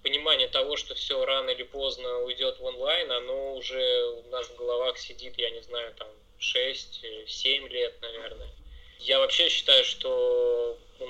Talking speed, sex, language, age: 155 wpm, male, Russian, 20-39